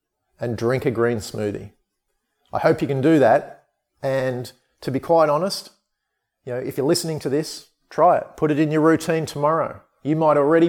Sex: male